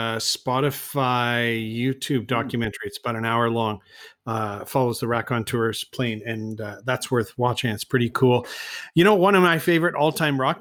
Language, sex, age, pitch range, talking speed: English, male, 40-59, 125-145 Hz, 170 wpm